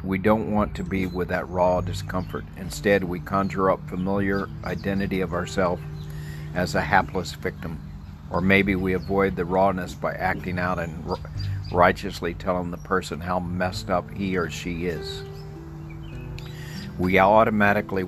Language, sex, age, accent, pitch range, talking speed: English, male, 50-69, American, 80-95 Hz, 145 wpm